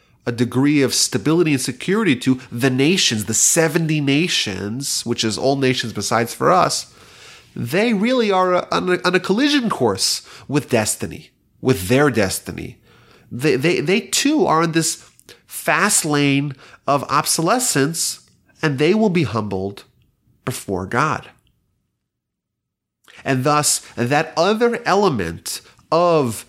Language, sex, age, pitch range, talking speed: English, male, 30-49, 115-165 Hz, 125 wpm